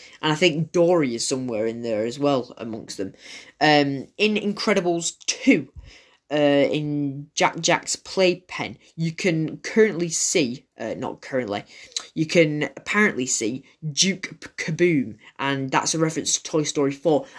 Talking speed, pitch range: 145 wpm, 140-180 Hz